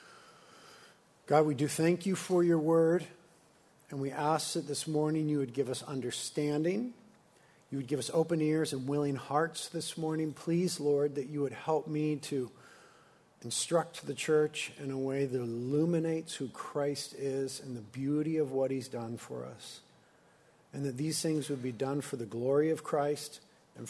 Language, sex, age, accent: English, male, 50-69, American